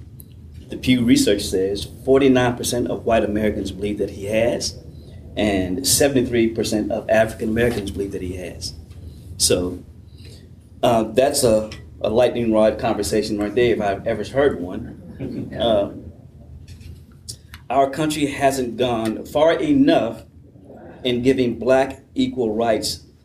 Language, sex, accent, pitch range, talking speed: English, male, American, 100-130 Hz, 125 wpm